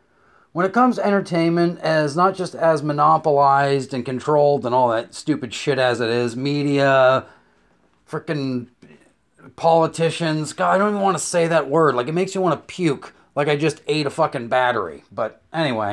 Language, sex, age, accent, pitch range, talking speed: English, male, 30-49, American, 125-170 Hz, 175 wpm